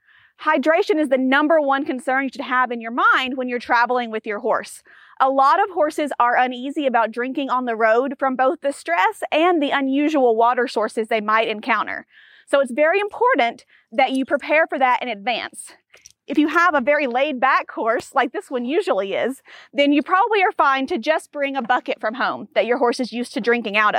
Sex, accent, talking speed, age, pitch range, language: female, American, 215 wpm, 30-49, 245-315 Hz, English